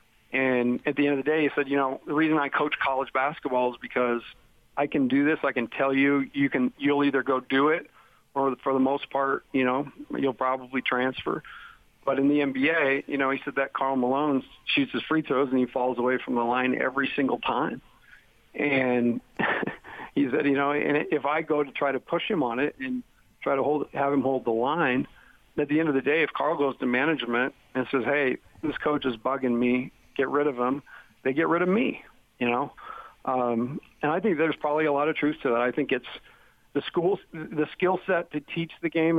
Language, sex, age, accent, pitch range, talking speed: English, male, 50-69, American, 125-150 Hz, 230 wpm